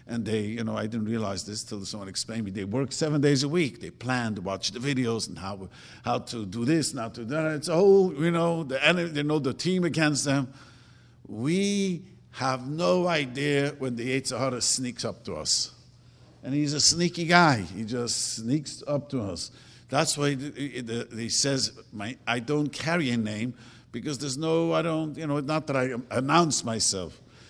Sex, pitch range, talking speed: male, 115-145 Hz, 205 wpm